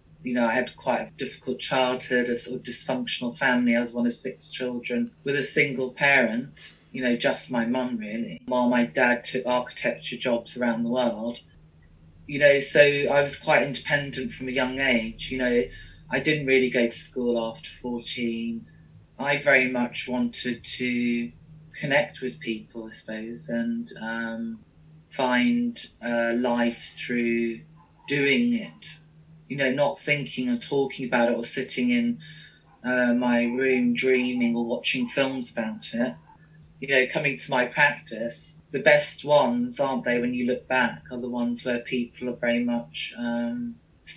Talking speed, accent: 165 wpm, British